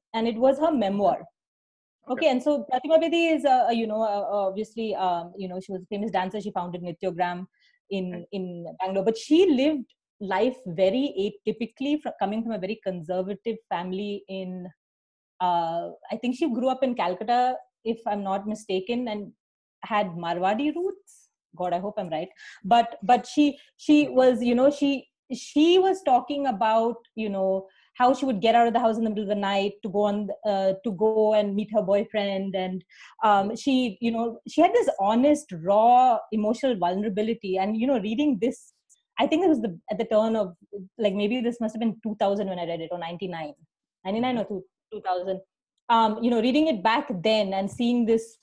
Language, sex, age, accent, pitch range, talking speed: English, female, 30-49, Indian, 195-245 Hz, 195 wpm